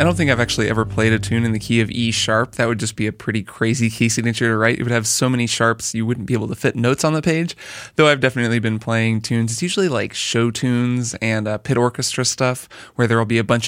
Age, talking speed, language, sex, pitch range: 20-39, 280 wpm, English, male, 115-130 Hz